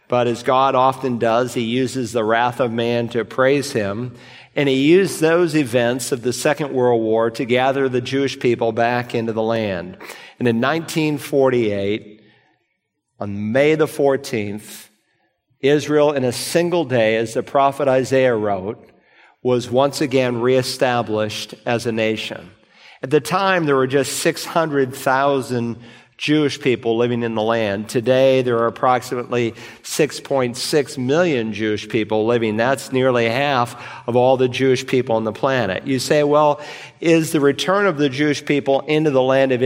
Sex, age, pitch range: male, 50-69, 120-140 Hz